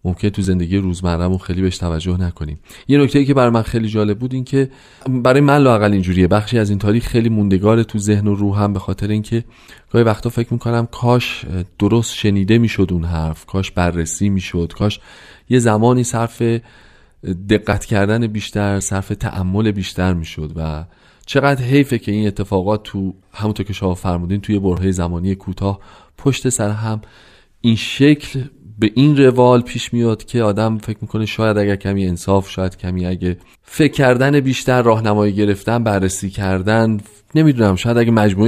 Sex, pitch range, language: male, 95-115 Hz, Persian